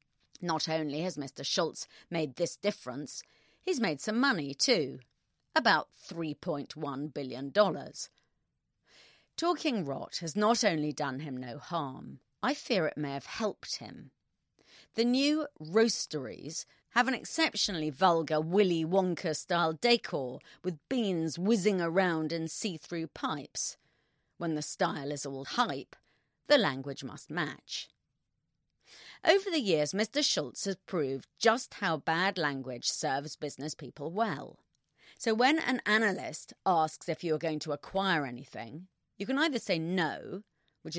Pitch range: 150-210 Hz